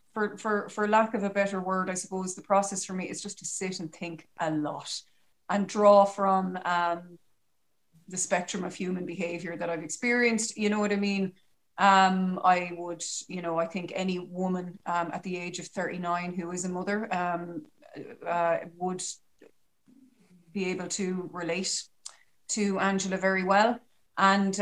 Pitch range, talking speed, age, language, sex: 180-205 Hz, 170 wpm, 30-49, English, female